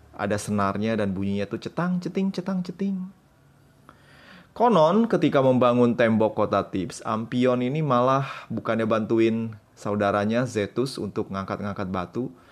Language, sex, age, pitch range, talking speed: Indonesian, male, 20-39, 100-125 Hz, 115 wpm